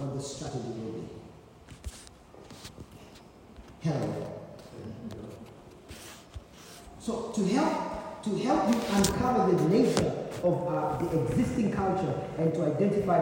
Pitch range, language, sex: 145-200 Hz, English, male